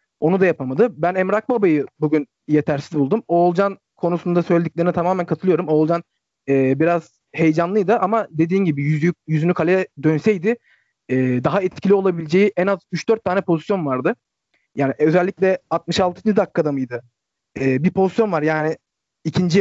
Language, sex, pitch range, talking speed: Turkish, male, 155-195 Hz, 145 wpm